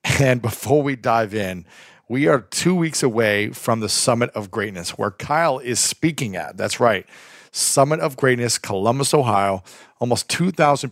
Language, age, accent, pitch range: English, 40-59, American, 110-140 Hz